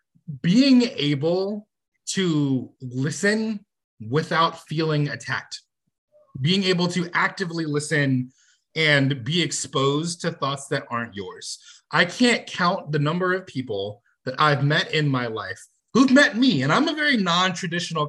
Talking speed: 135 wpm